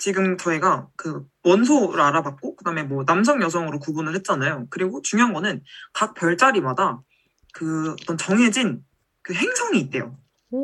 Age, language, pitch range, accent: 20-39, Korean, 160-260 Hz, native